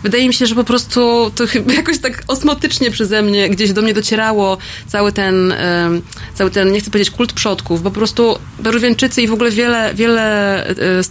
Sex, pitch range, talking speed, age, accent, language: female, 180-220 Hz, 195 wpm, 20-39, native, Polish